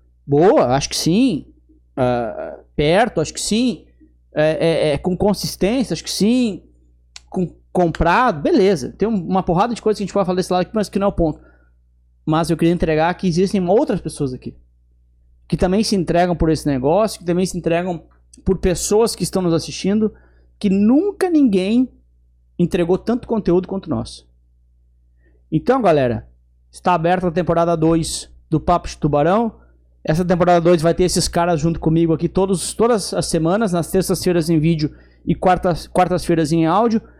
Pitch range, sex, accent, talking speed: 155-200 Hz, male, Brazilian, 165 wpm